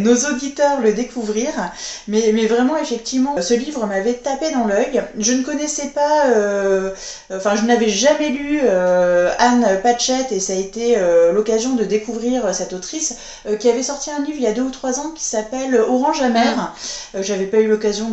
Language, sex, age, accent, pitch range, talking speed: French, female, 20-39, French, 210-270 Hz, 195 wpm